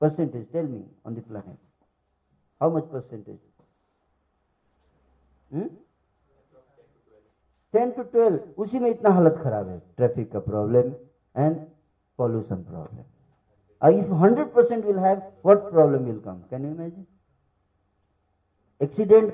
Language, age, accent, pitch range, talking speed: Hindi, 50-69, native, 105-170 Hz, 35 wpm